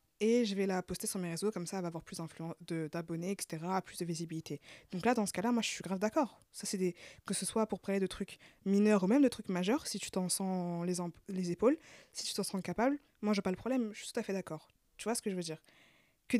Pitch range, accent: 185-220 Hz, French